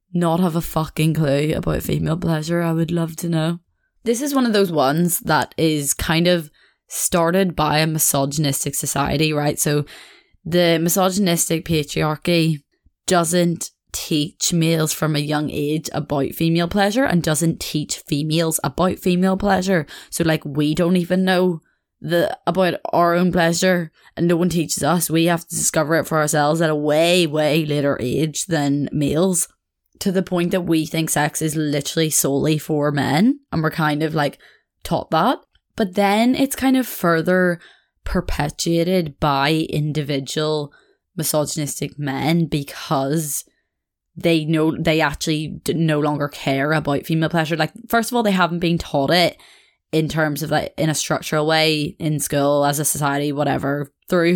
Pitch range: 150-175 Hz